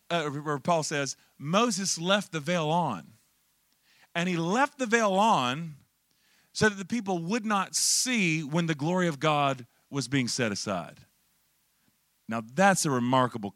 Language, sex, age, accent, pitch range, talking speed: English, male, 40-59, American, 135-190 Hz, 155 wpm